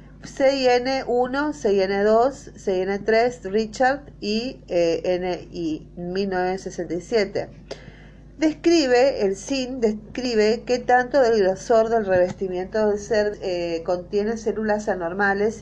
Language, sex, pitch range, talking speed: Spanish, female, 180-230 Hz, 90 wpm